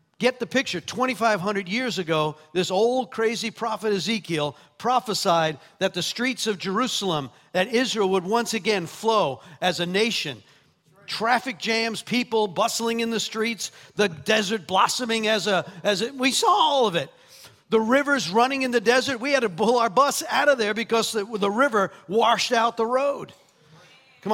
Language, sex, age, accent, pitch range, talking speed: English, male, 50-69, American, 185-230 Hz, 170 wpm